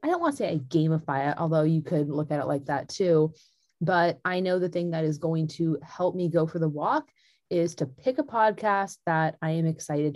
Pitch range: 155-190 Hz